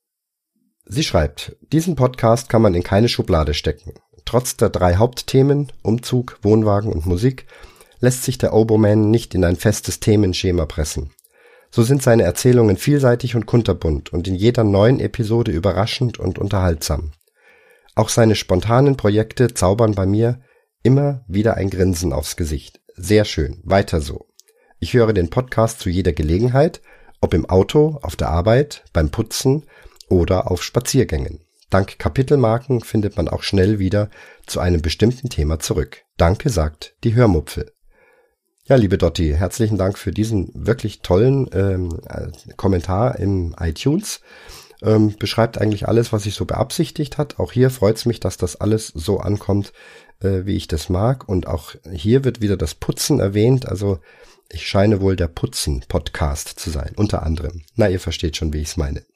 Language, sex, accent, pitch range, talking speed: German, male, German, 90-120 Hz, 160 wpm